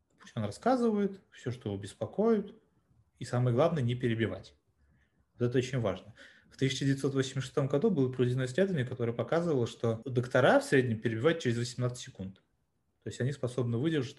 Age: 20-39